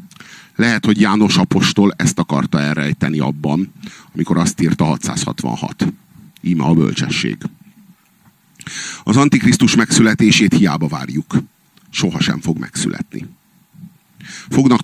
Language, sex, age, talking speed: Hungarian, male, 50-69, 100 wpm